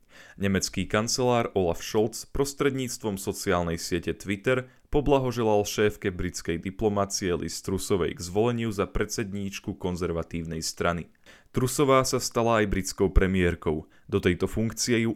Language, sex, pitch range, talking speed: Slovak, male, 90-115 Hz, 120 wpm